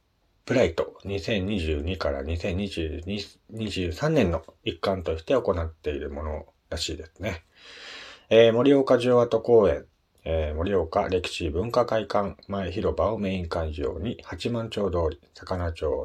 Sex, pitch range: male, 90-120 Hz